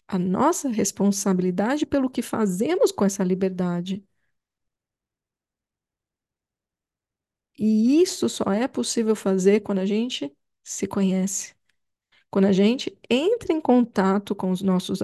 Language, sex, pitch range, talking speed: Portuguese, female, 195-245 Hz, 115 wpm